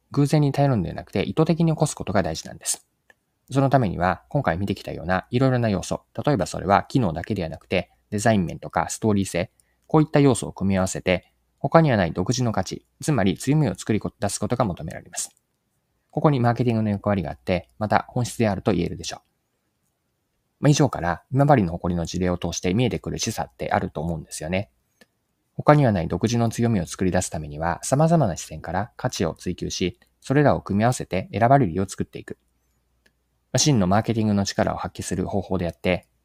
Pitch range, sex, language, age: 85-125 Hz, male, Japanese, 20-39